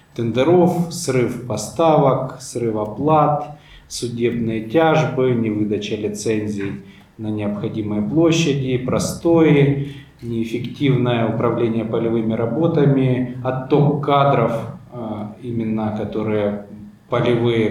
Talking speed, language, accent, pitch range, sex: 75 wpm, Ukrainian, native, 110-140 Hz, male